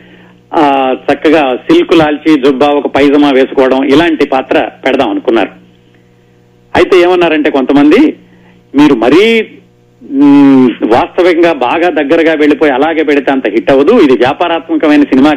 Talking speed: 110 wpm